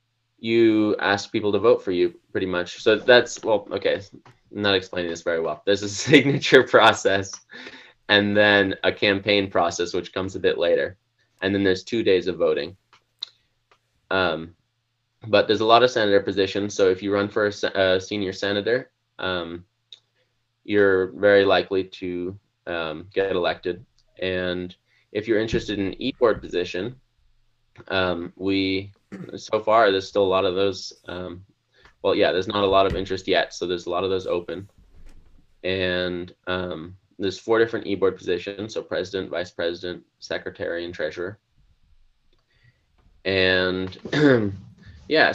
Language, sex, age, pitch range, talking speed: English, male, 20-39, 90-115 Hz, 155 wpm